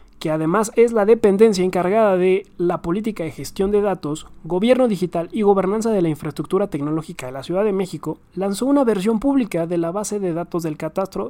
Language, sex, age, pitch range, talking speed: Spanish, male, 30-49, 165-210 Hz, 195 wpm